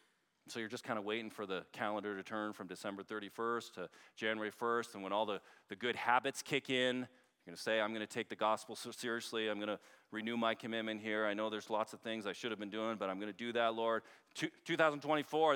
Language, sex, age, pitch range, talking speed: English, male, 40-59, 105-145 Hz, 245 wpm